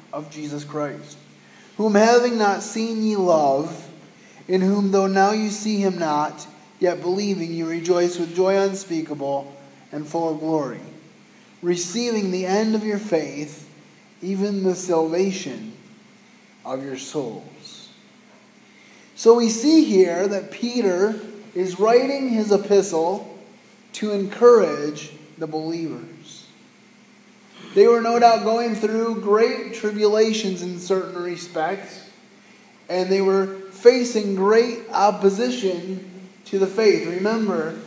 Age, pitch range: 20-39, 180-225 Hz